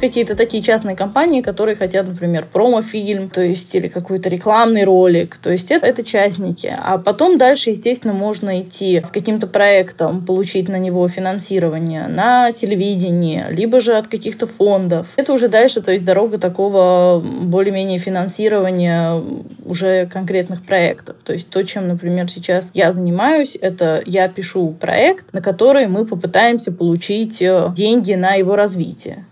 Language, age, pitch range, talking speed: Russian, 10-29, 180-215 Hz, 145 wpm